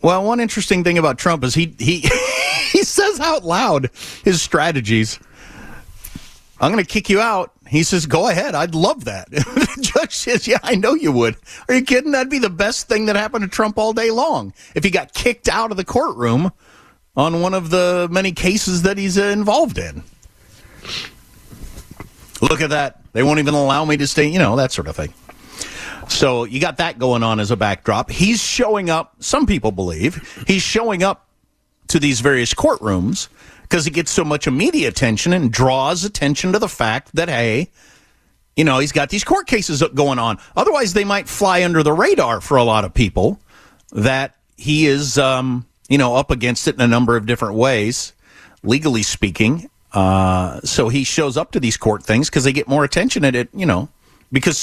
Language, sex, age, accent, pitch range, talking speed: English, male, 50-69, American, 120-195 Hz, 195 wpm